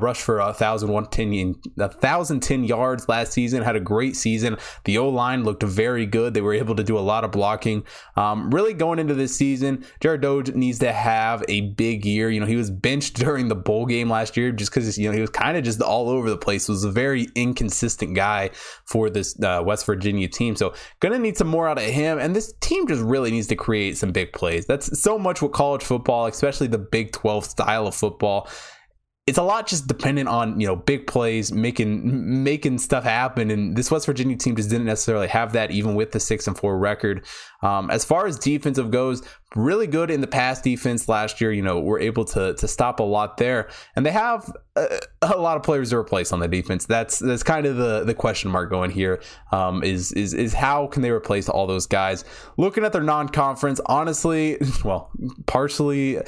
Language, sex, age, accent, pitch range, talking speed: English, male, 20-39, American, 105-135 Hz, 225 wpm